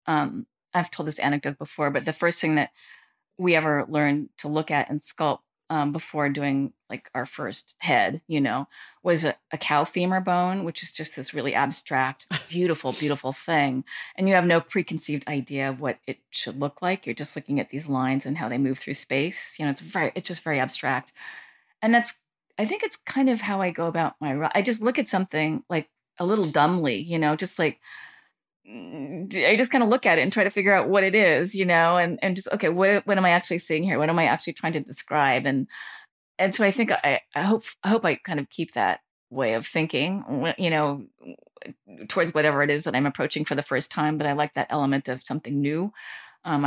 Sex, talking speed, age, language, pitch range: female, 225 wpm, 30-49, English, 145-180 Hz